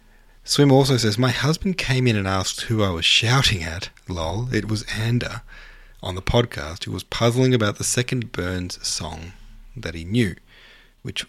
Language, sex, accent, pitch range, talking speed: English, male, Australian, 90-115 Hz, 175 wpm